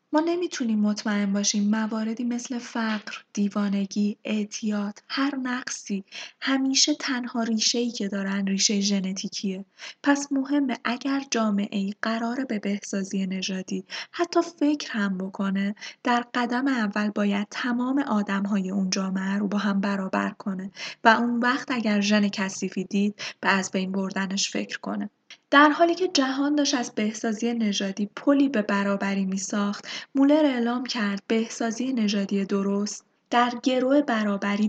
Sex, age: female, 10-29